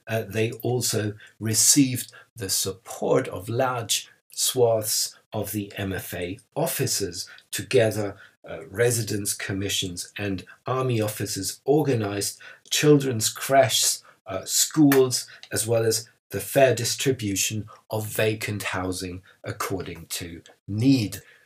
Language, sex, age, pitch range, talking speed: English, male, 50-69, 100-130 Hz, 105 wpm